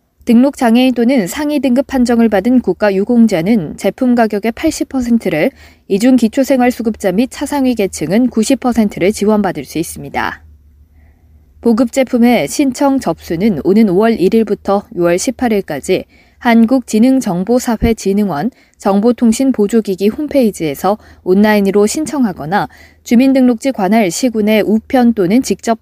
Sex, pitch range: female, 180-240 Hz